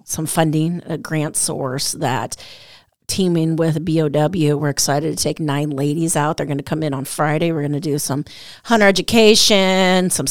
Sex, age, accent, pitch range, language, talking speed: female, 30-49, American, 155-180 Hz, English, 180 wpm